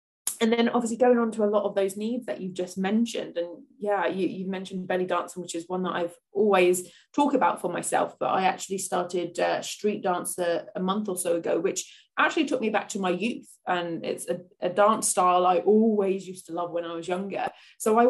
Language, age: English, 20-39